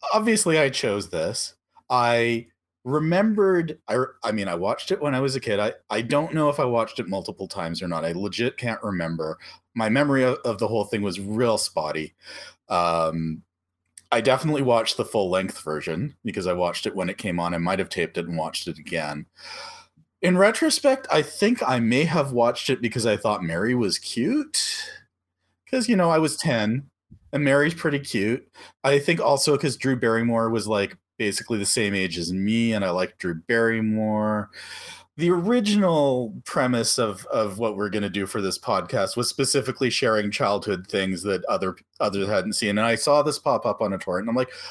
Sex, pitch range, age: male, 105-160 Hz, 40-59